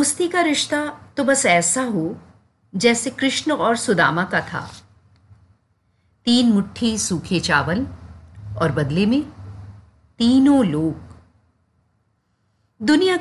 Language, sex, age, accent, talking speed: Hindi, female, 50-69, native, 100 wpm